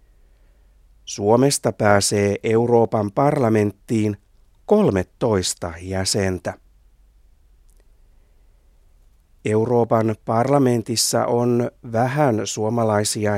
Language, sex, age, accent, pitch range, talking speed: Finnish, male, 60-79, native, 95-130 Hz, 50 wpm